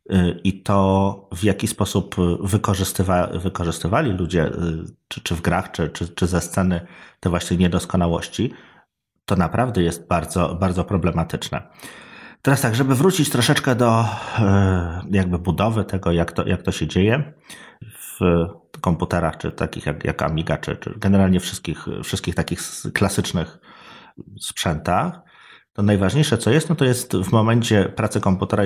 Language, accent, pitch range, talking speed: Polish, native, 85-100 Hz, 135 wpm